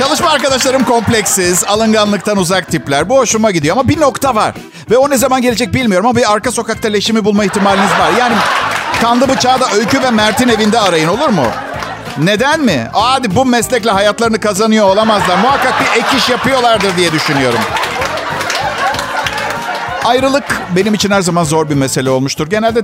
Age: 50-69